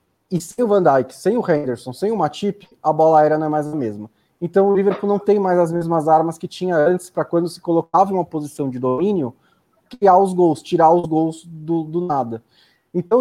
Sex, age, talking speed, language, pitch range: male, 20-39, 225 wpm, Portuguese, 130-170 Hz